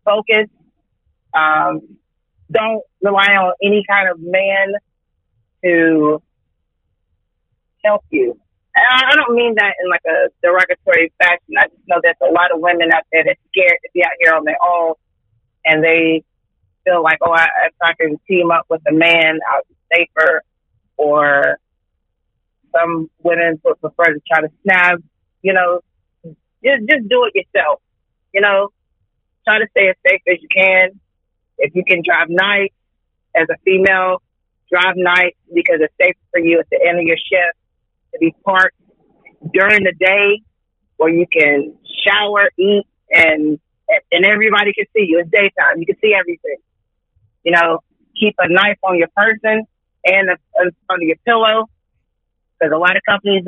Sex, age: female, 30-49